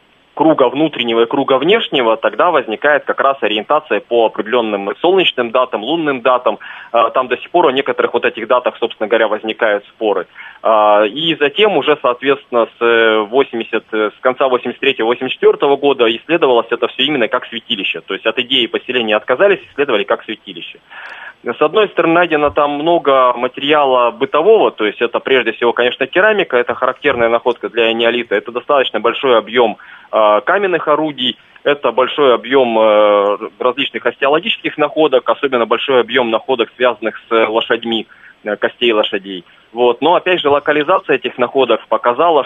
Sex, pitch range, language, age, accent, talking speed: male, 115-145 Hz, Russian, 20-39, native, 145 wpm